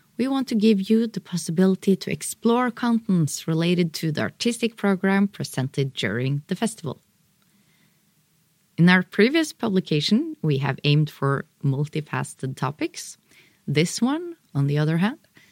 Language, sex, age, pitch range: English, female, 30-49, 145-205 Hz